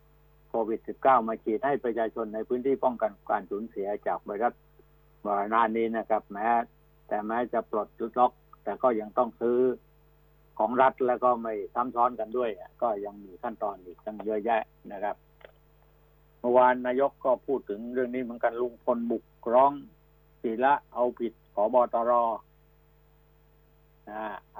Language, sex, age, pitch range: Thai, male, 60-79, 110-130 Hz